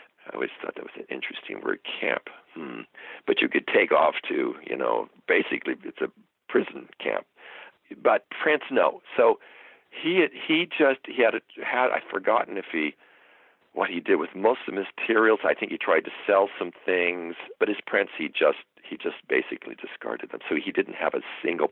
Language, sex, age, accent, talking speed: English, male, 60-79, American, 190 wpm